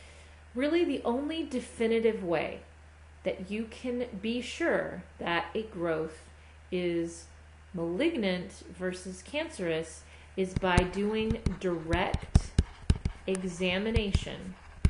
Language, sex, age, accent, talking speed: English, female, 40-59, American, 90 wpm